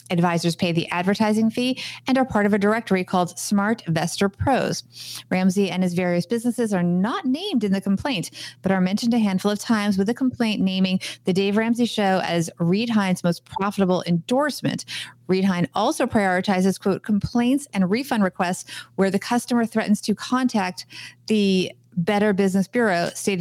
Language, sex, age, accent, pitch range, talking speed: English, female, 30-49, American, 185-230 Hz, 170 wpm